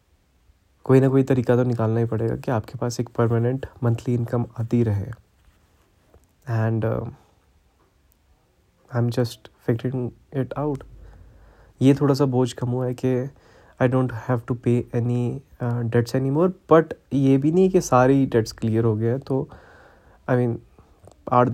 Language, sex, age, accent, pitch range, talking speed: Hindi, male, 20-39, native, 110-125 Hz, 155 wpm